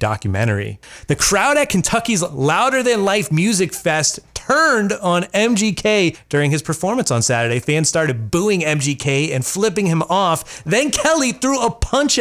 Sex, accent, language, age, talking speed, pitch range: male, American, English, 30-49, 150 wpm, 130-190 Hz